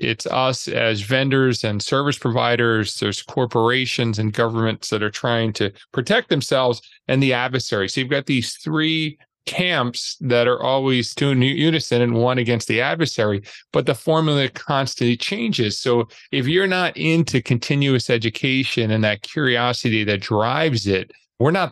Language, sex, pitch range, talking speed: English, male, 115-135 Hz, 155 wpm